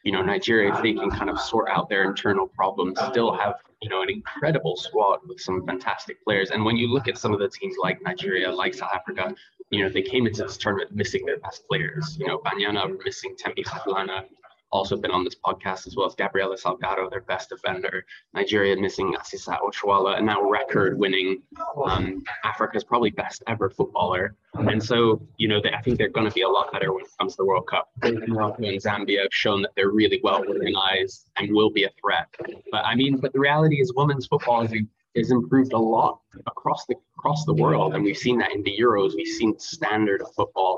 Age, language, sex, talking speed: 20-39, English, male, 220 wpm